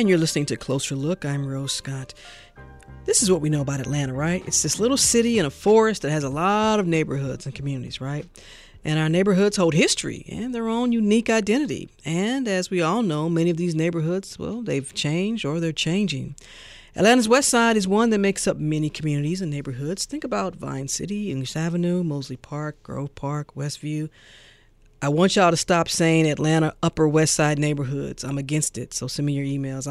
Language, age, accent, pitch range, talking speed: English, 40-59, American, 150-200 Hz, 200 wpm